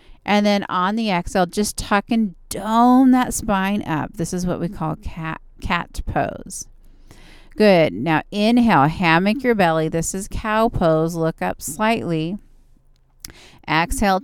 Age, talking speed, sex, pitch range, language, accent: 40-59, 145 wpm, female, 170-210 Hz, English, American